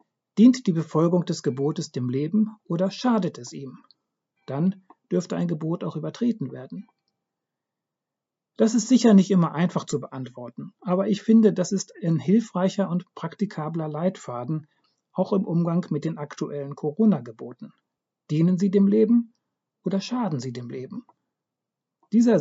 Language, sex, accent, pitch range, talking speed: German, male, German, 150-195 Hz, 140 wpm